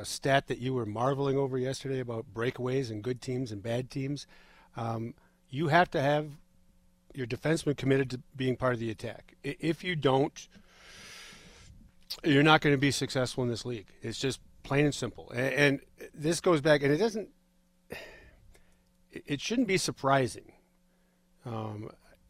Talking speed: 160 wpm